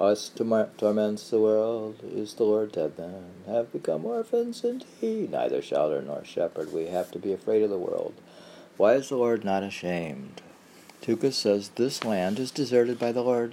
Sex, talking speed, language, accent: male, 185 wpm, English, American